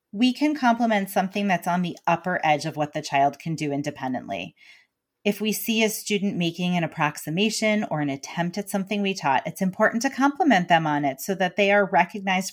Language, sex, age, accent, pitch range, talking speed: English, female, 30-49, American, 155-200 Hz, 205 wpm